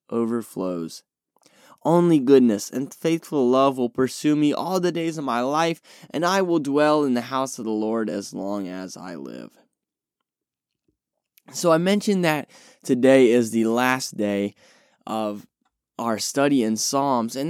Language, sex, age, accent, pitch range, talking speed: English, male, 10-29, American, 120-165 Hz, 155 wpm